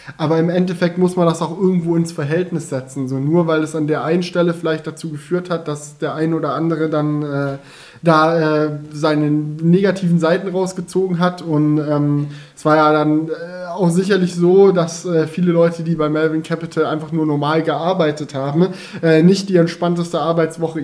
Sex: male